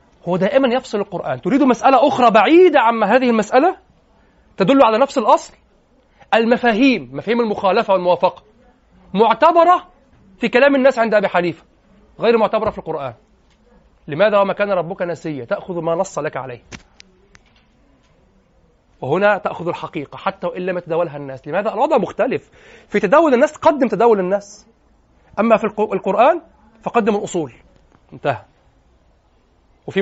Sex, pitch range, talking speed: male, 180-245 Hz, 125 wpm